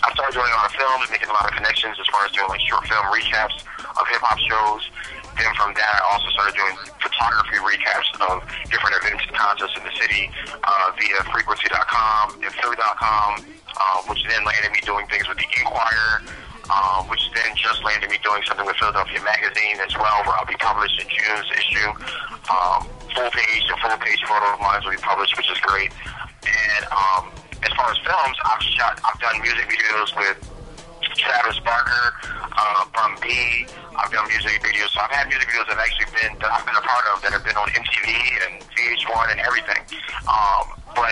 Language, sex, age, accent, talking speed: English, male, 30-49, American, 195 wpm